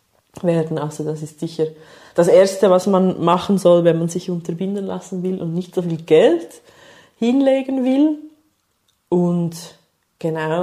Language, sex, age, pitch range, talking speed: German, female, 20-39, 155-200 Hz, 145 wpm